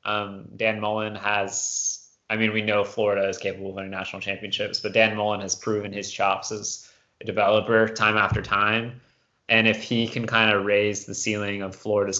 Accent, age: American, 20-39